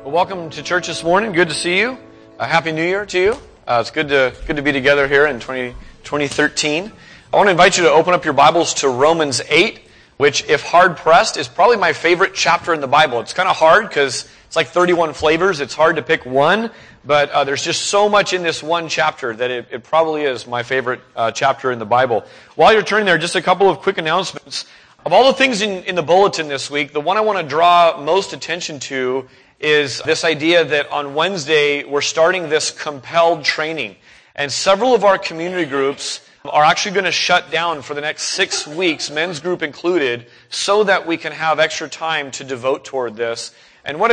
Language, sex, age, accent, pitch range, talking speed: English, male, 30-49, American, 140-175 Hz, 220 wpm